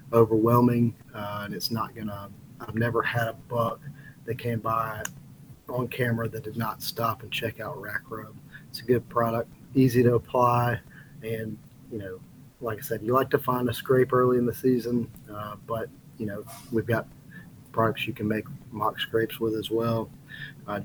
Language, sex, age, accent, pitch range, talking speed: English, male, 30-49, American, 115-130 Hz, 185 wpm